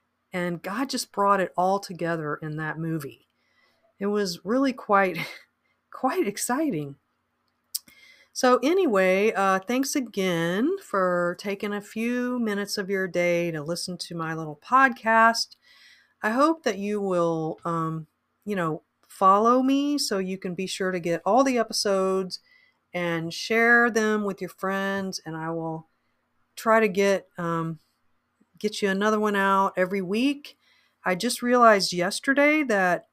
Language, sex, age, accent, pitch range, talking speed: English, female, 40-59, American, 170-225 Hz, 145 wpm